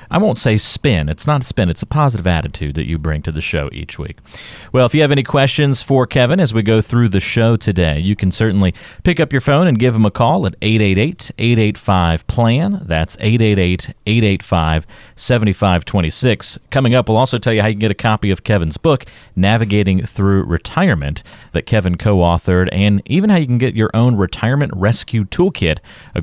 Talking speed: 190 wpm